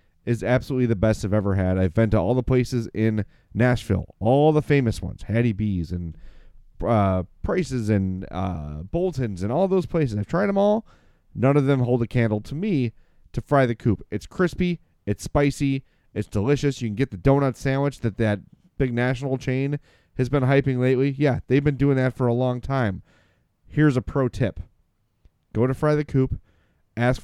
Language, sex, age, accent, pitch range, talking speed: English, male, 30-49, American, 100-135 Hz, 190 wpm